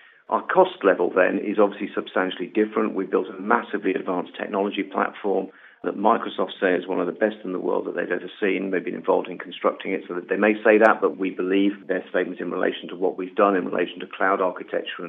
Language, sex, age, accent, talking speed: English, male, 40-59, British, 230 wpm